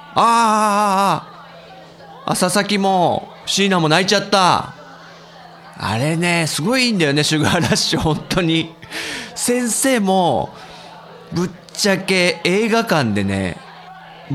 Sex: male